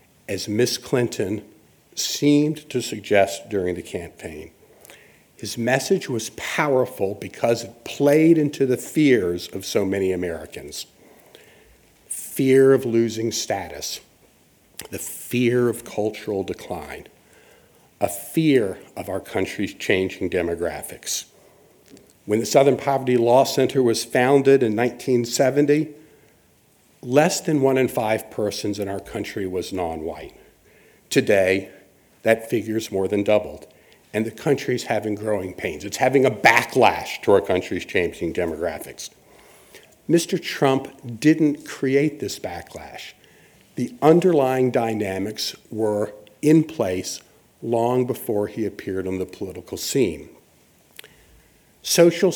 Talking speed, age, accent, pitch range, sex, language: 115 wpm, 50-69, American, 105-140 Hz, male, English